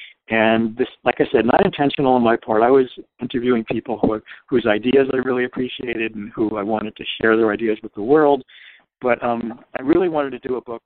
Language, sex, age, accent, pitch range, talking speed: English, male, 60-79, American, 110-125 Hz, 225 wpm